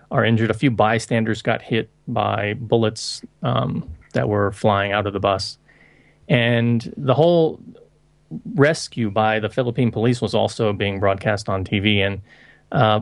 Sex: male